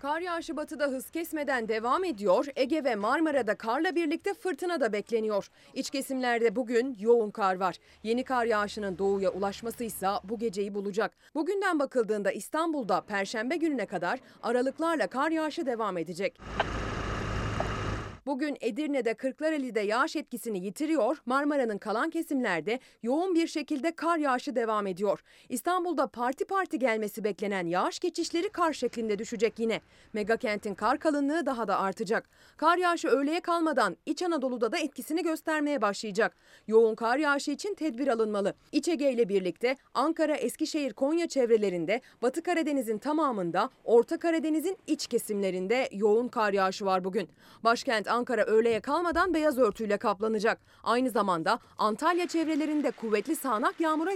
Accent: native